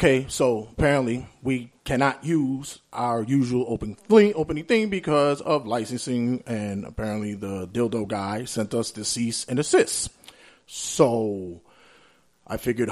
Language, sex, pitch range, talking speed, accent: English, male, 105-135 Hz, 135 wpm, American